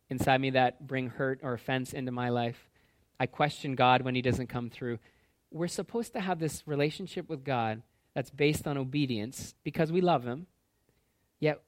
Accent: American